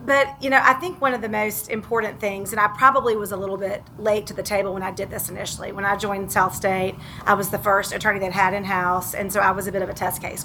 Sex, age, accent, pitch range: female, 40-59, American, 190-220 Hz